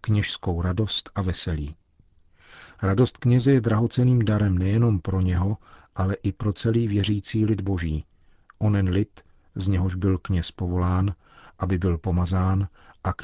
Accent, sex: native, male